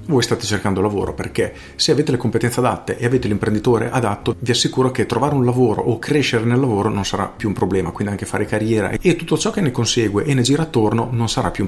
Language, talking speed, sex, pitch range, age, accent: Italian, 240 wpm, male, 110-140 Hz, 40-59, native